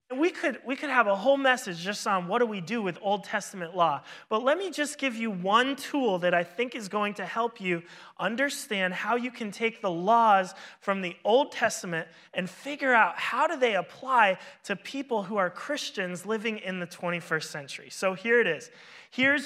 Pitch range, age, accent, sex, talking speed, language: 175-230 Hz, 30-49, American, male, 205 wpm, English